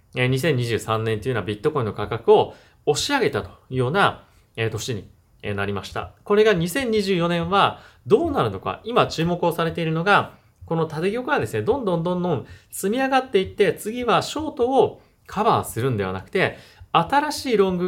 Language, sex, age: Japanese, male, 30-49